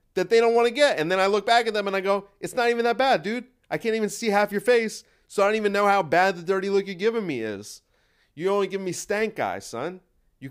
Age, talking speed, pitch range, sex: 30-49, 290 wpm, 130-195 Hz, male